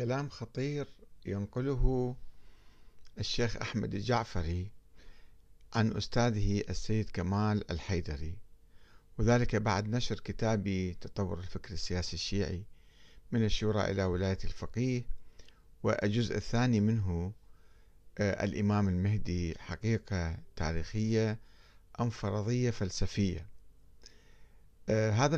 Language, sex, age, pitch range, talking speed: Arabic, male, 50-69, 90-115 Hz, 85 wpm